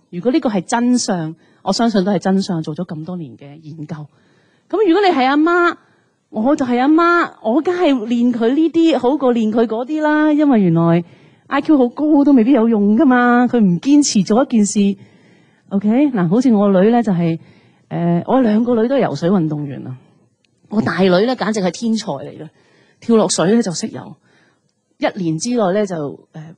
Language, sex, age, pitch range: Chinese, female, 30-49, 165-240 Hz